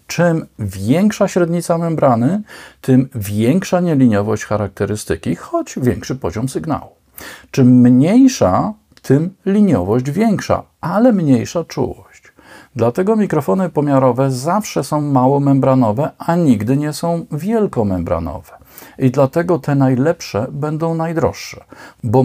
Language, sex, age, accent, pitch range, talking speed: Polish, male, 50-69, native, 120-165 Hz, 105 wpm